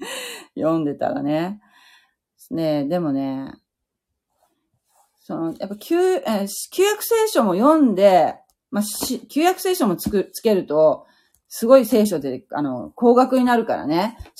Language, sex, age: Japanese, female, 40-59